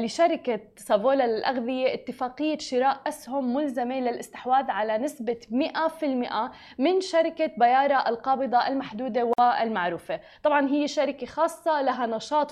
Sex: female